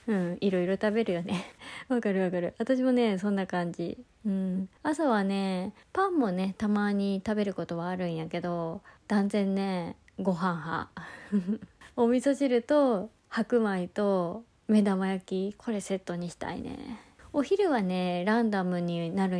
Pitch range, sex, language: 185-240 Hz, female, Japanese